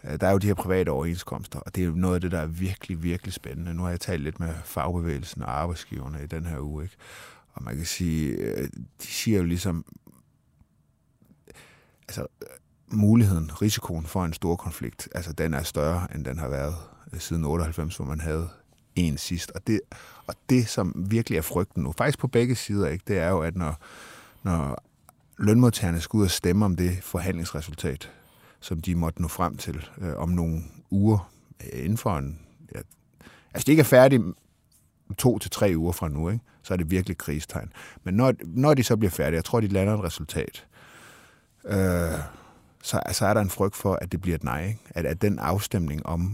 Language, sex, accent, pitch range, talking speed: Danish, male, native, 80-100 Hz, 195 wpm